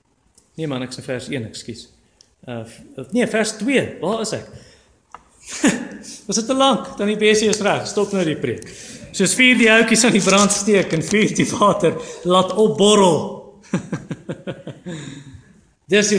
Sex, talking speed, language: male, 155 wpm, English